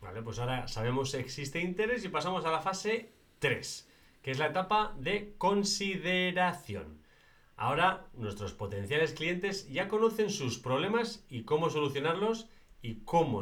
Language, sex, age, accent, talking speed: Spanish, male, 30-49, Spanish, 145 wpm